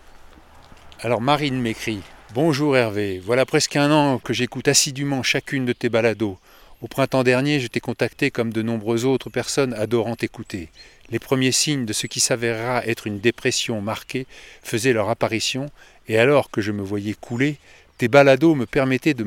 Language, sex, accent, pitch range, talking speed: French, male, French, 110-135 Hz, 175 wpm